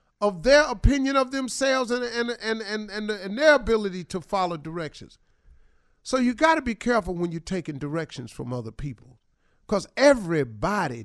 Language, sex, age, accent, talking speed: English, male, 50-69, American, 155 wpm